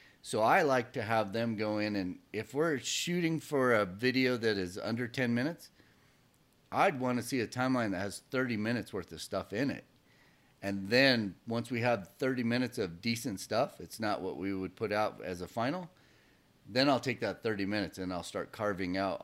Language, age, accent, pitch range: English, 40-59, American, 90-125 Hz